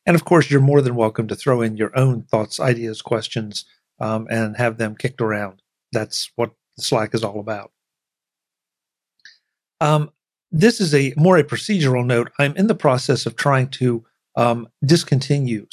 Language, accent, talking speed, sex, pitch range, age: English, American, 170 wpm, male, 115-140 Hz, 50-69